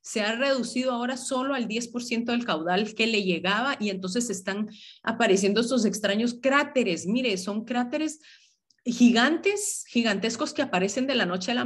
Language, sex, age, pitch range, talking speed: Spanish, female, 40-59, 185-245 Hz, 160 wpm